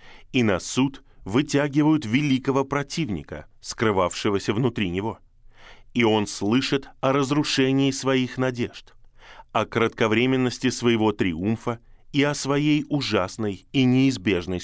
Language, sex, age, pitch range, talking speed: Russian, male, 20-39, 105-130 Hz, 105 wpm